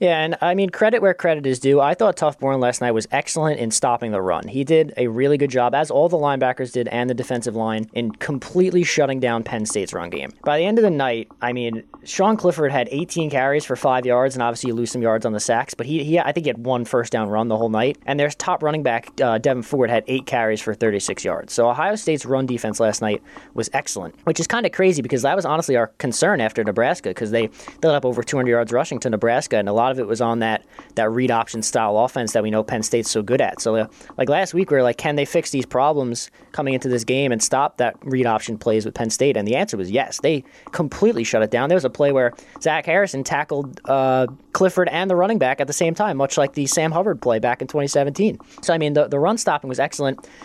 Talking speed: 265 wpm